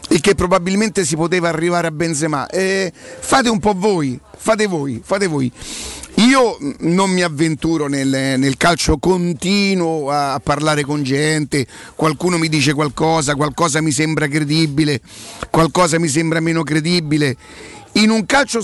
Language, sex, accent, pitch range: Italian, male, native, 150-190 Hz